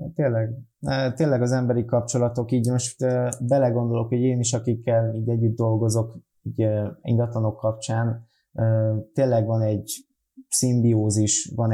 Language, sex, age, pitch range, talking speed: Hungarian, male, 20-39, 105-120 Hz, 120 wpm